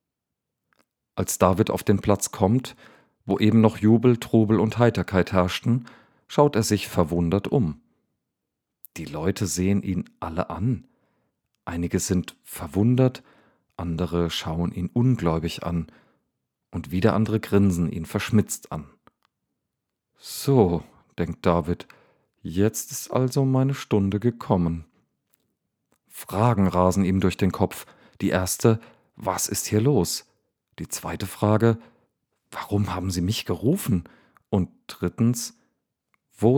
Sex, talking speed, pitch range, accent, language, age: male, 120 wpm, 90-110 Hz, German, German, 40-59